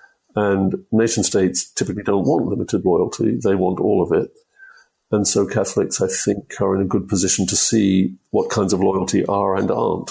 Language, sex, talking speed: English, male, 190 wpm